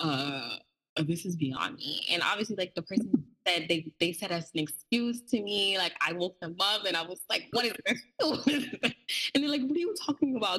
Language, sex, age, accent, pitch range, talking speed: English, female, 20-39, American, 165-230 Hz, 240 wpm